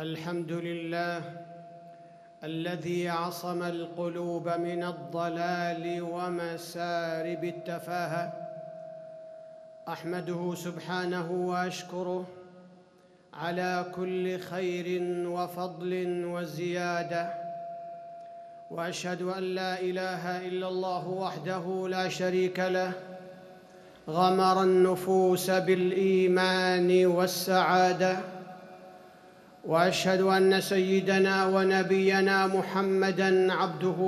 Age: 50-69